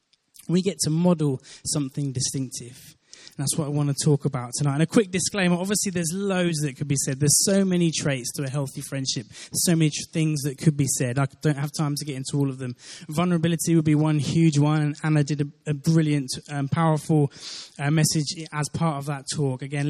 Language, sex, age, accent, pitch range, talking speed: English, male, 20-39, British, 140-160 Hz, 215 wpm